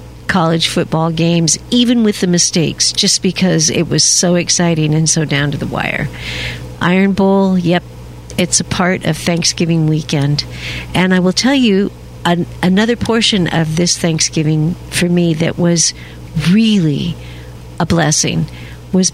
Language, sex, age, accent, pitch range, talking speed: English, female, 50-69, American, 155-185 Hz, 145 wpm